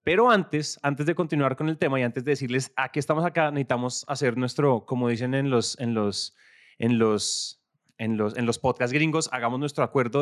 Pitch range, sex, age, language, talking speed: 120-150 Hz, male, 20-39, Spanish, 210 wpm